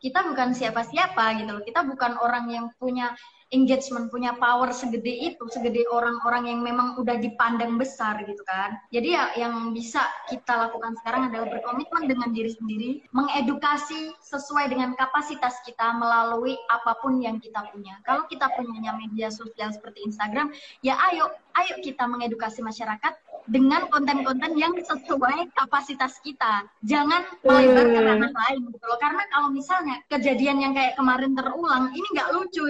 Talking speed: 150 wpm